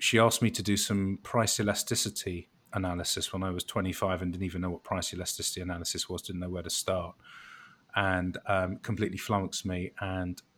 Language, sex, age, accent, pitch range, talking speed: English, male, 30-49, British, 95-110 Hz, 185 wpm